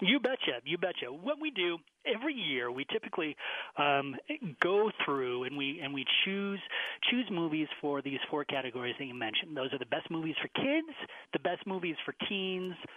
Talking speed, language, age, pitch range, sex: 185 wpm, English, 30-49, 140-185 Hz, male